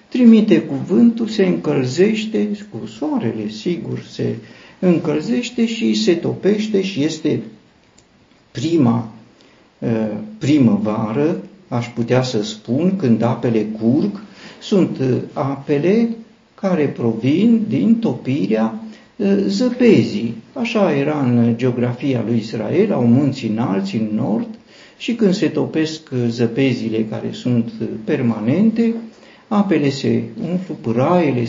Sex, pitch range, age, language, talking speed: male, 115-180 Hz, 50-69, Romanian, 100 wpm